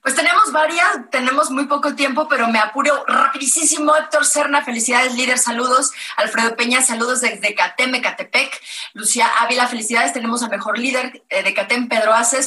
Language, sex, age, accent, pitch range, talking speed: Spanish, female, 30-49, Mexican, 230-275 Hz, 165 wpm